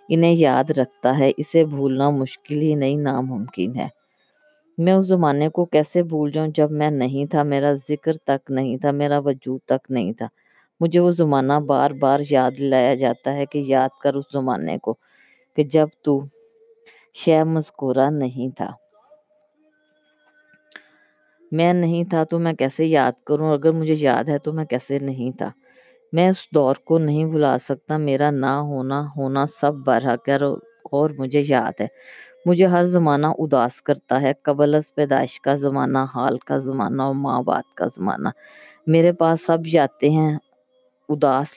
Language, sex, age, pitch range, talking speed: Urdu, female, 20-39, 135-160 Hz, 165 wpm